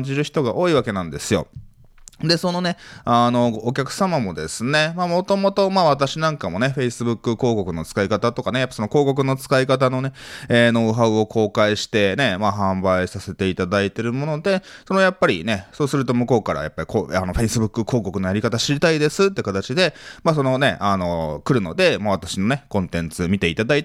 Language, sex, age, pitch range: Japanese, male, 20-39, 100-140 Hz